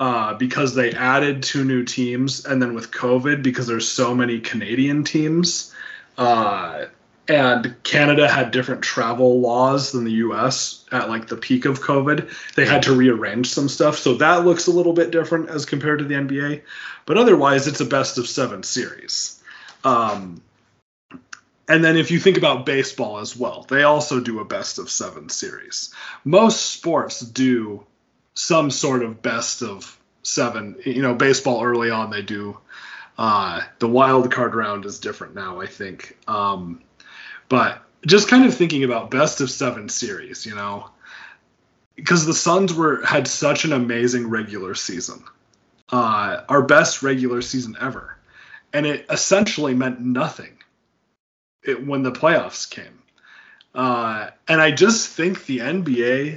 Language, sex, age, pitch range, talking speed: English, male, 30-49, 120-150 Hz, 155 wpm